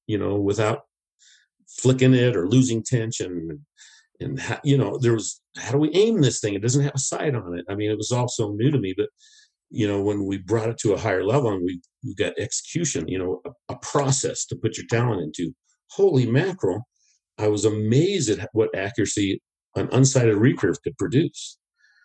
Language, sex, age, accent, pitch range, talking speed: English, male, 50-69, American, 105-135 Hz, 205 wpm